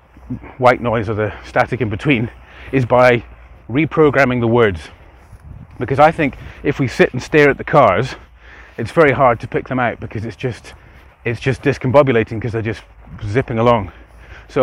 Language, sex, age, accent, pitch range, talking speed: English, male, 30-49, British, 100-140 Hz, 170 wpm